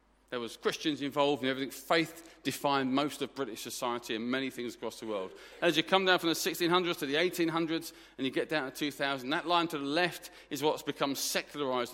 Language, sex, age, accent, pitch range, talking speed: English, male, 40-59, British, 145-195 Hz, 215 wpm